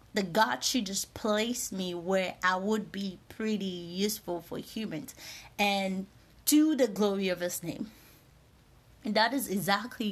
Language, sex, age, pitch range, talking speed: English, female, 30-49, 190-240 Hz, 150 wpm